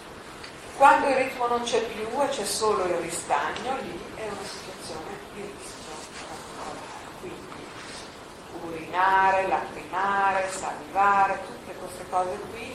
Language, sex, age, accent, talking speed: Italian, female, 40-59, native, 120 wpm